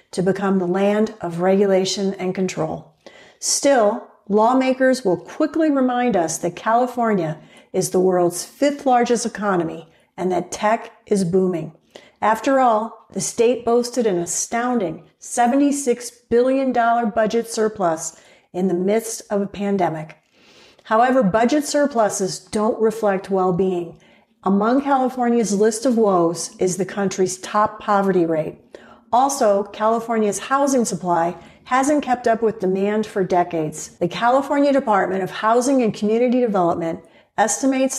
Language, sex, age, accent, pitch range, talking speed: English, female, 50-69, American, 185-240 Hz, 130 wpm